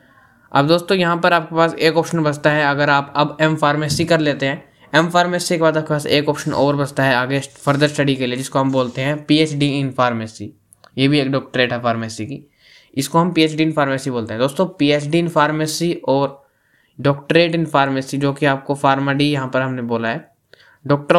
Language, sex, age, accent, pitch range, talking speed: Hindi, male, 20-39, native, 135-155 Hz, 205 wpm